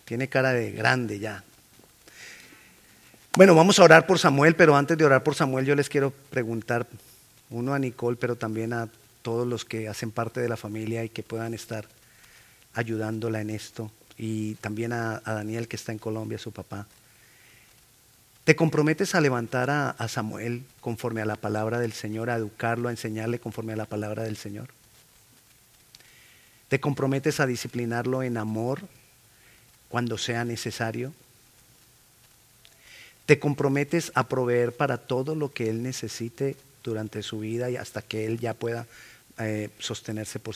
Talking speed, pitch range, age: 155 wpm, 110-130 Hz, 40-59